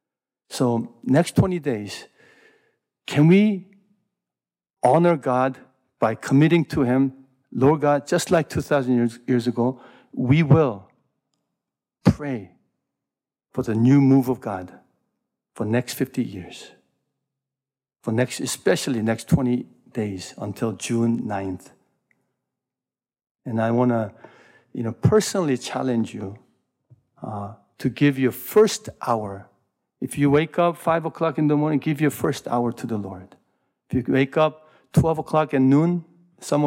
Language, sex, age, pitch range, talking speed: English, male, 60-79, 120-160 Hz, 135 wpm